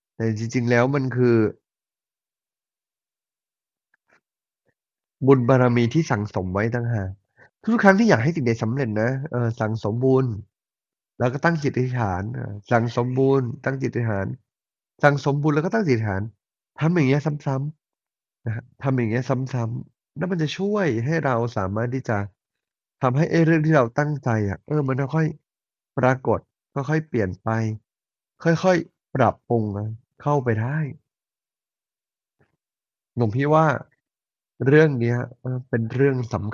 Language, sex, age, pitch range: Thai, male, 30-49, 110-140 Hz